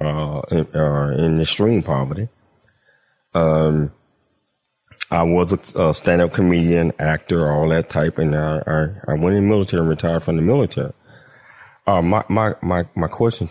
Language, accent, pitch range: English, American, 75-90 Hz